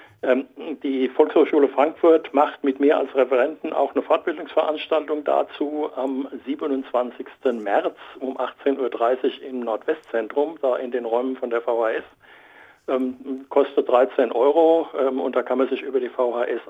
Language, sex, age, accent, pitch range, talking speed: German, male, 60-79, German, 125-160 Hz, 145 wpm